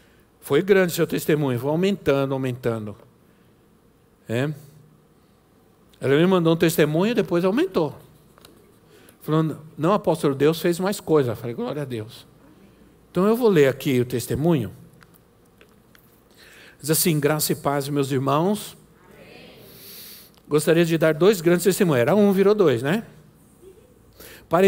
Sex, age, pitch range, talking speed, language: male, 60-79, 145-175 Hz, 135 wpm, Portuguese